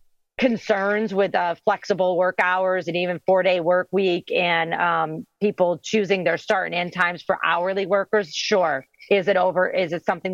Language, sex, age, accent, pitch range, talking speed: English, female, 40-59, American, 175-210 Hz, 180 wpm